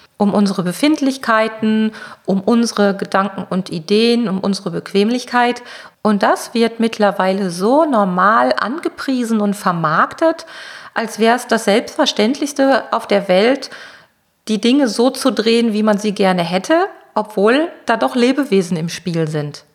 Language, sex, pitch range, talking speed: German, female, 190-230 Hz, 135 wpm